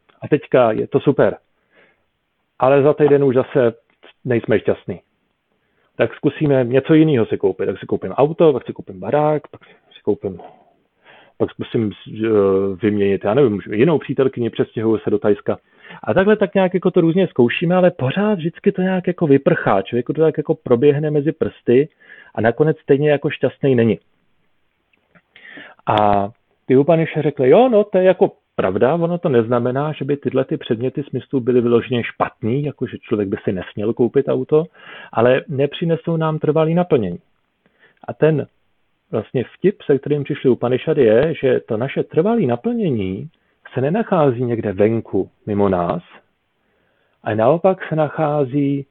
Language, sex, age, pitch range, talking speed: Slovak, male, 40-59, 120-165 Hz, 160 wpm